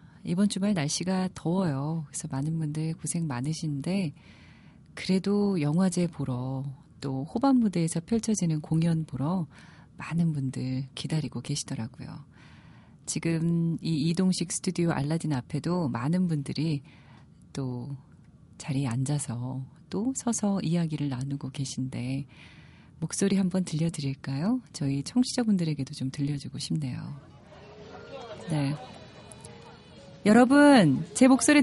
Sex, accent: female, native